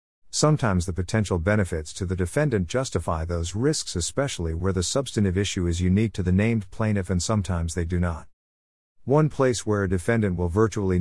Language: English